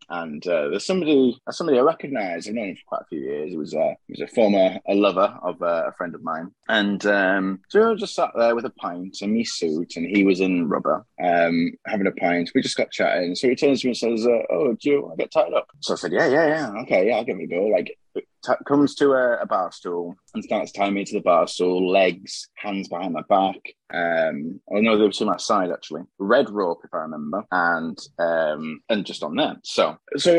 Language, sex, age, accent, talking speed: English, male, 20-39, British, 245 wpm